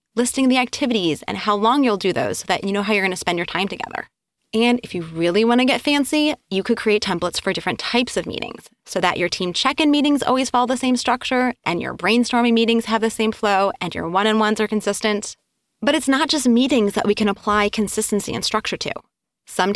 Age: 20-39